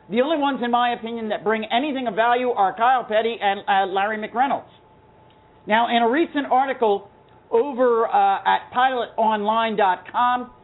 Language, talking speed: English, 150 wpm